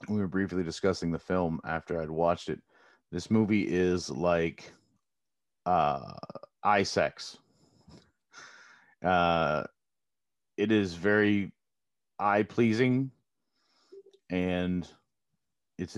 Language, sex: English, male